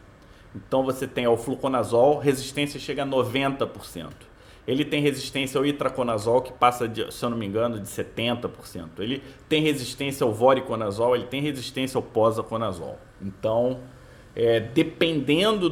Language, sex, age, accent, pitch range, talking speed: Portuguese, male, 30-49, Brazilian, 120-160 Hz, 135 wpm